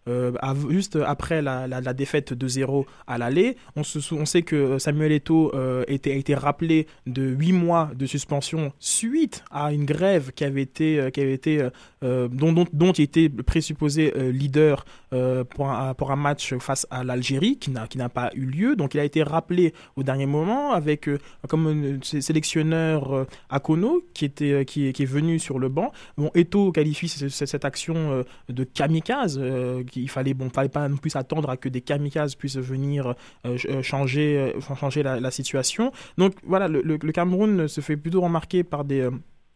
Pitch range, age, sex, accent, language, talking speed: 135-160 Hz, 20-39, male, French, French, 200 wpm